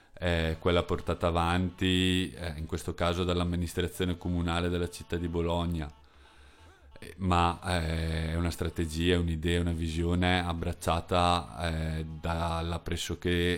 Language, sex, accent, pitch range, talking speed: Italian, male, native, 80-90 Hz, 110 wpm